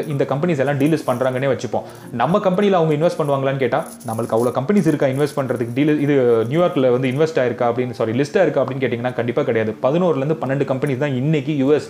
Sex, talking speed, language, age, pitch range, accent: male, 200 wpm, Tamil, 30-49, 130-170 Hz, native